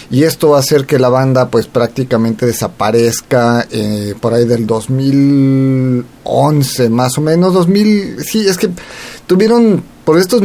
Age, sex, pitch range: 40-59, male, 125-165 Hz